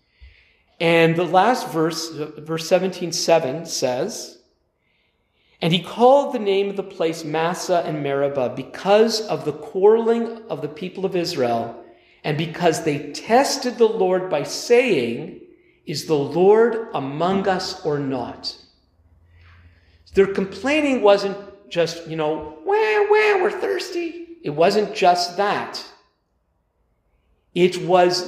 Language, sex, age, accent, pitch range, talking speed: English, male, 50-69, American, 150-210 Hz, 125 wpm